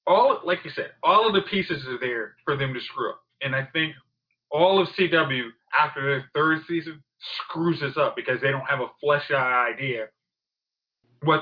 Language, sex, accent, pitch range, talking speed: English, male, American, 135-165 Hz, 190 wpm